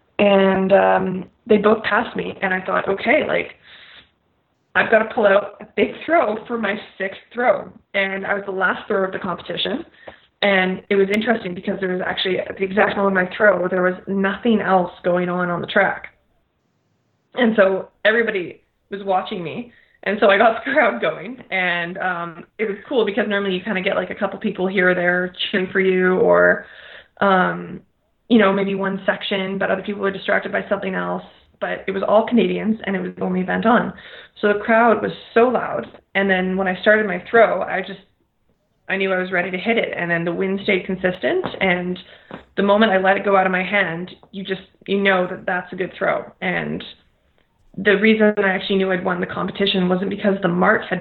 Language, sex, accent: English, female, American